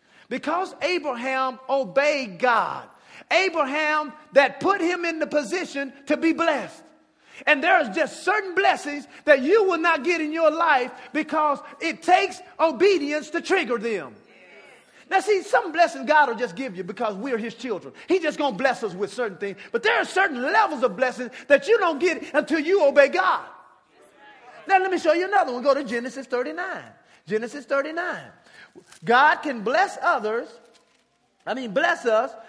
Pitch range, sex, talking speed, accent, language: 230-330 Hz, male, 175 wpm, American, English